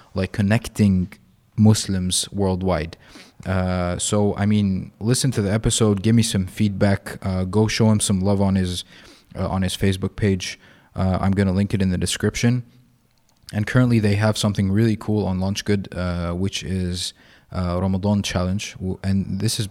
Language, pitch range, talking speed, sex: Arabic, 95-110 Hz, 170 wpm, male